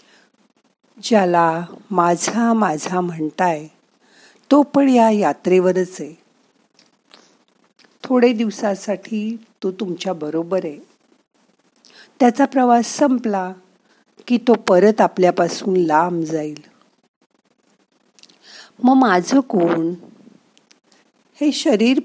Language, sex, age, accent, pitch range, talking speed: Marathi, female, 50-69, native, 175-240 Hz, 60 wpm